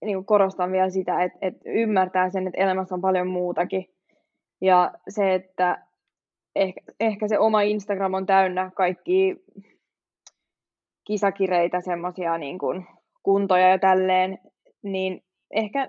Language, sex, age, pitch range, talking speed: Finnish, female, 20-39, 185-200 Hz, 120 wpm